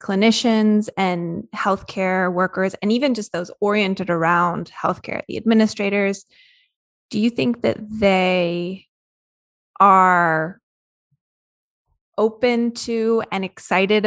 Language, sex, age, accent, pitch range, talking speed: English, female, 20-39, American, 195-225 Hz, 100 wpm